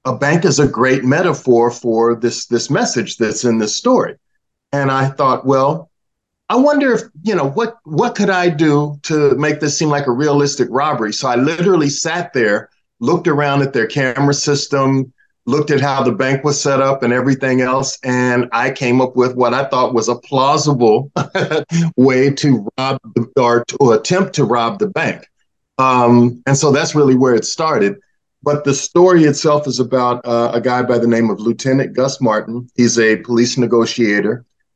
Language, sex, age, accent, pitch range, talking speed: English, male, 50-69, American, 120-145 Hz, 185 wpm